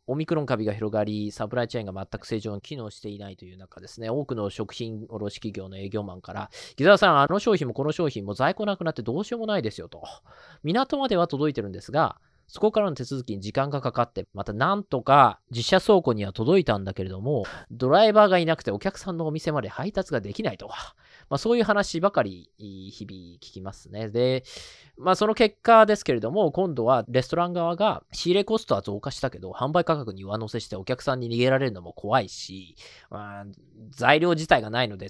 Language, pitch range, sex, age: Japanese, 105-160 Hz, male, 20-39